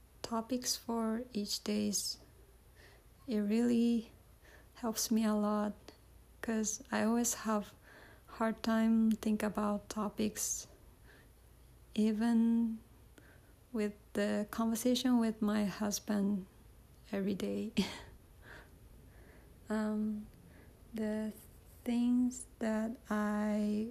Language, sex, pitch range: Japanese, female, 210-230 Hz